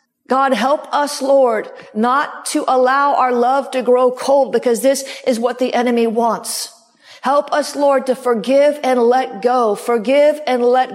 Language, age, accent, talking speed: English, 50-69, American, 165 wpm